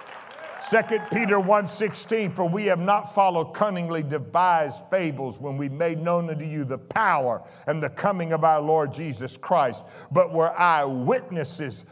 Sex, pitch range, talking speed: male, 155-205 Hz, 150 wpm